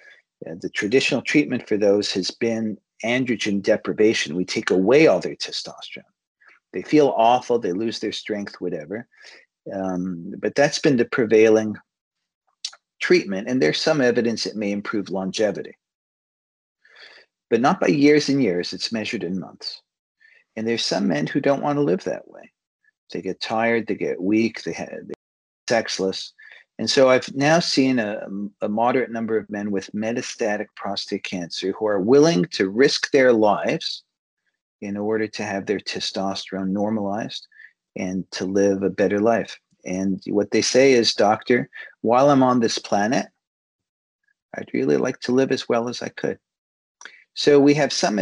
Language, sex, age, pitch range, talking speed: English, male, 50-69, 100-130 Hz, 165 wpm